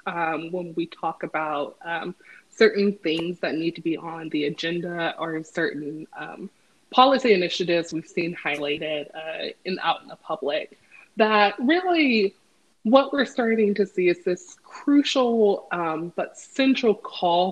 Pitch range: 165-205 Hz